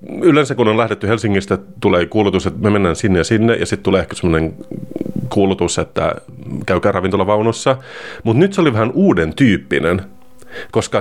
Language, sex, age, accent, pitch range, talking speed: Finnish, male, 30-49, native, 95-125 Hz, 165 wpm